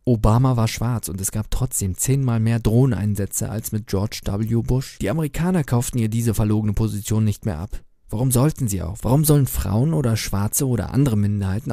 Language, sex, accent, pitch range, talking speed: German, male, German, 105-125 Hz, 190 wpm